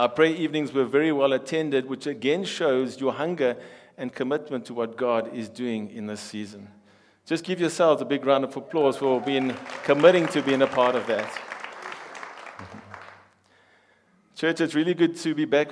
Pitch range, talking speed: 135-170 Hz, 175 wpm